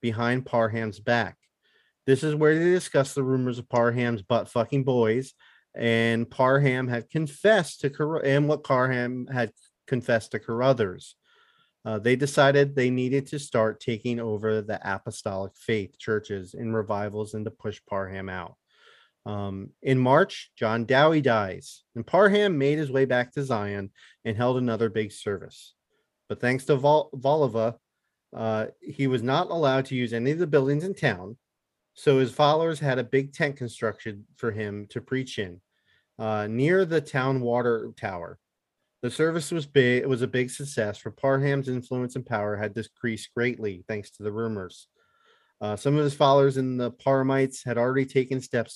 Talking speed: 165 wpm